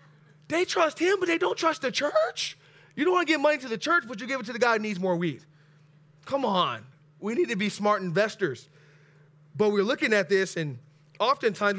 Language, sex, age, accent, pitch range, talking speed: English, male, 20-39, American, 150-210 Hz, 225 wpm